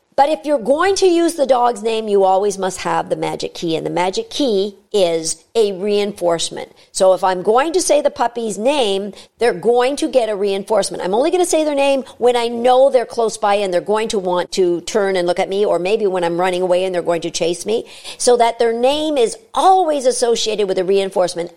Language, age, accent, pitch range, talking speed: English, 50-69, American, 190-275 Hz, 235 wpm